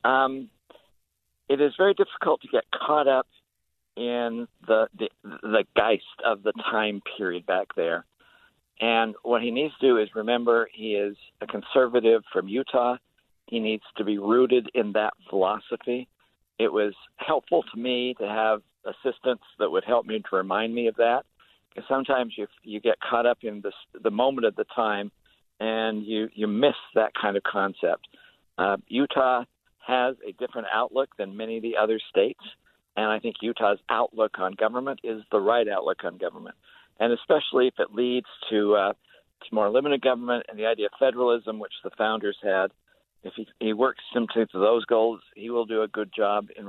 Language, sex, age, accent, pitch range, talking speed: English, male, 60-79, American, 105-125 Hz, 180 wpm